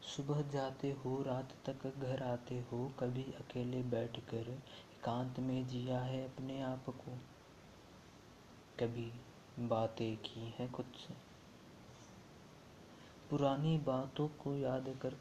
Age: 20-39